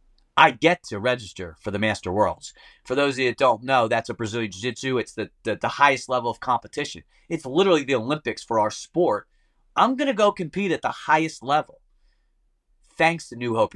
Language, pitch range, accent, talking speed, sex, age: English, 110-160 Hz, American, 200 wpm, male, 30-49